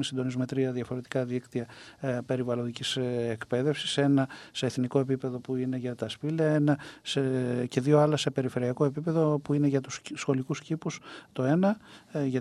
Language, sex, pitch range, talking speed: Greek, male, 130-160 Hz, 155 wpm